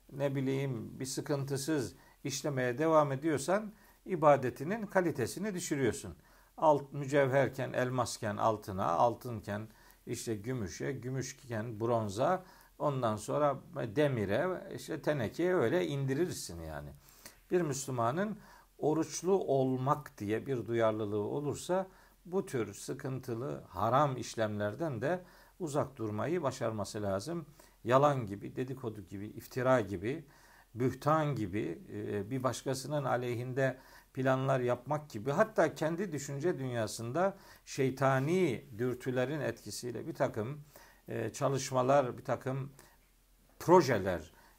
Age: 50-69